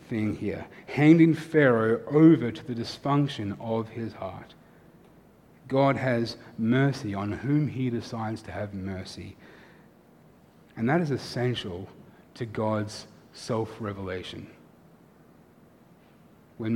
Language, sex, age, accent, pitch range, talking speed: English, male, 30-49, Australian, 105-140 Hz, 100 wpm